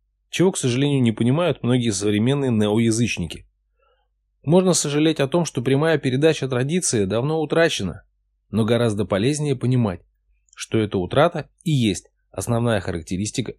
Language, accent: Russian, native